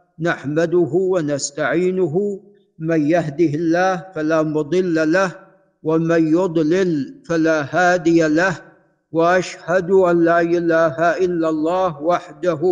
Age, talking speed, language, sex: 50-69, 95 wpm, Arabic, male